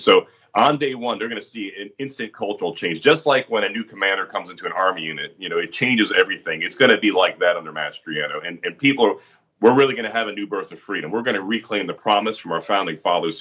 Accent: American